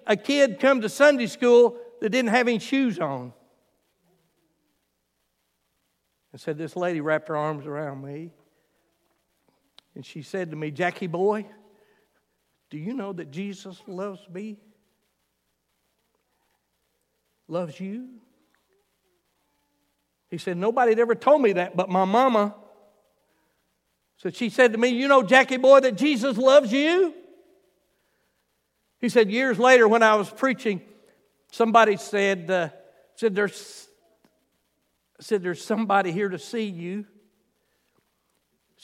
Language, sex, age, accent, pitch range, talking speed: English, male, 60-79, American, 165-220 Hz, 125 wpm